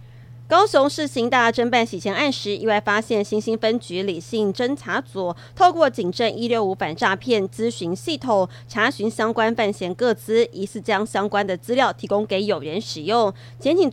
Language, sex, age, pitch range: Chinese, female, 30-49, 165-225 Hz